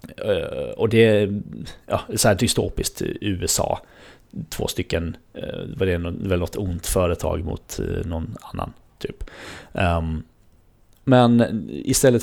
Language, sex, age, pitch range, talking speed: Swedish, male, 30-49, 90-115 Hz, 105 wpm